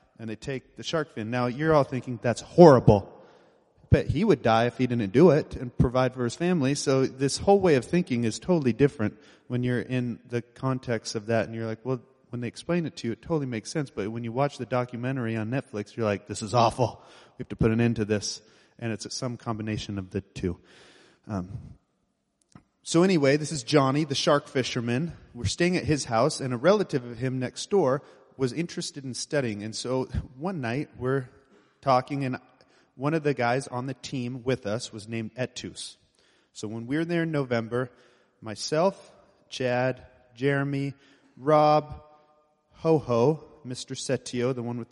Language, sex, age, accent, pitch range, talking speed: English, male, 30-49, American, 115-140 Hz, 190 wpm